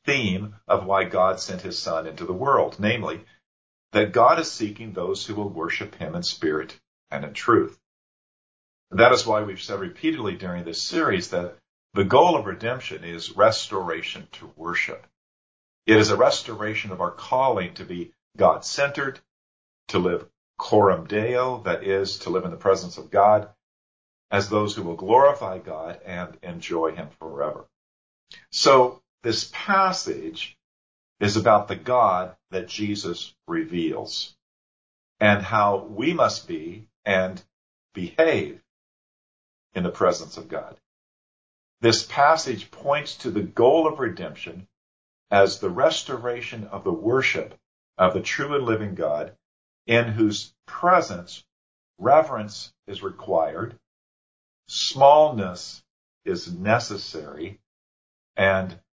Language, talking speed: English, 130 wpm